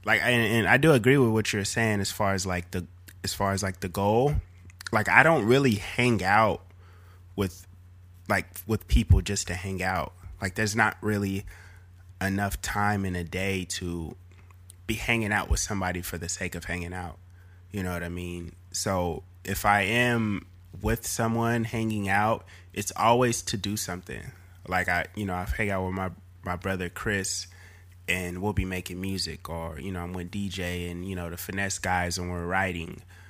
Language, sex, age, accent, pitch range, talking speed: English, male, 20-39, American, 90-105 Hz, 190 wpm